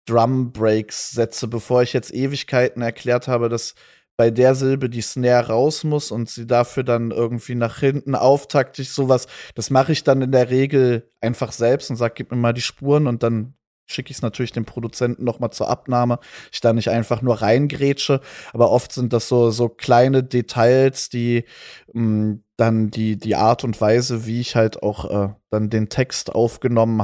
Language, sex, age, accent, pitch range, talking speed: German, male, 20-39, German, 110-125 Hz, 185 wpm